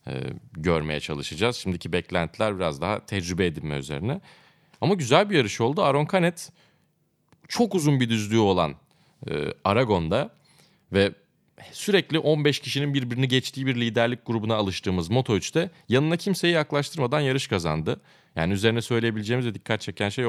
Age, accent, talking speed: 30-49, native, 140 wpm